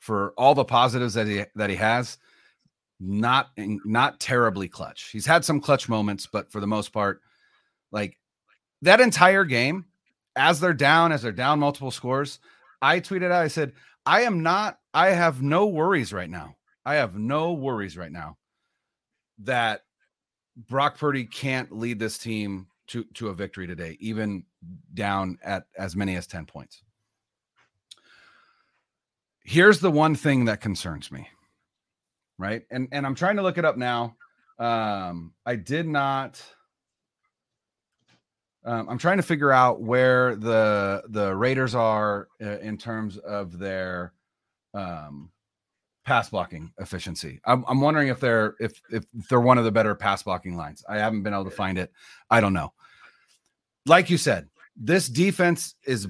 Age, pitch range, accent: 30-49, 100-140 Hz, American